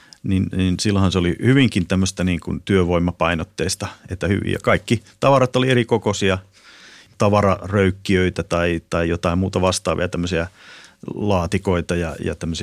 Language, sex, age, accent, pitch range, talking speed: Finnish, male, 30-49, native, 90-105 Hz, 120 wpm